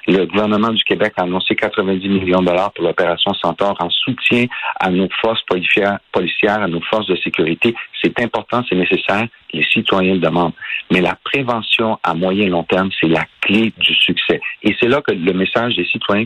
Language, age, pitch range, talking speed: French, 50-69, 95-125 Hz, 195 wpm